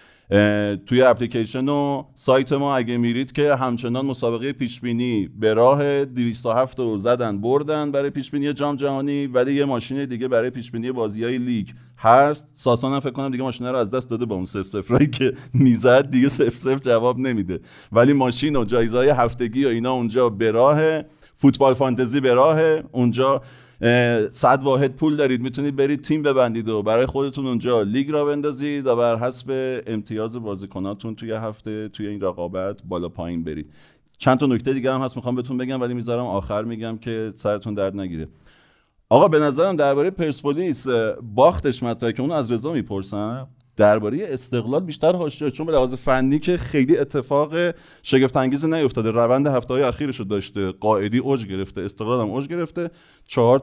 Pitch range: 115-140 Hz